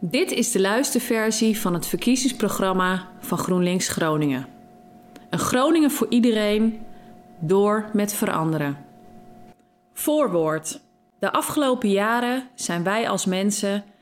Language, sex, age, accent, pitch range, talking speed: Dutch, female, 30-49, Dutch, 180-235 Hz, 105 wpm